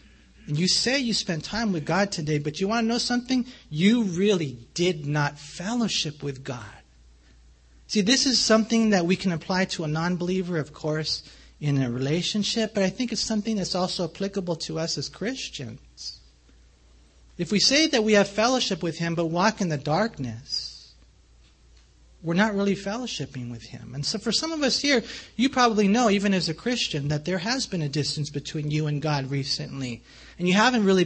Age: 40-59